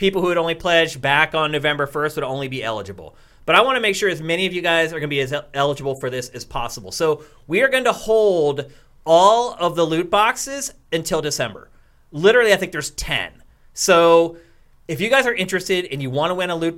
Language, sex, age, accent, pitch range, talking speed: English, male, 30-49, American, 140-185 Hz, 235 wpm